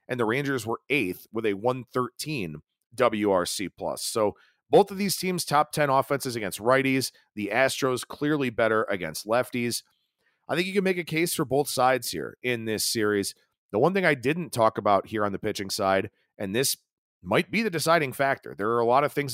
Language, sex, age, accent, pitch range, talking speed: English, male, 40-59, American, 110-150 Hz, 200 wpm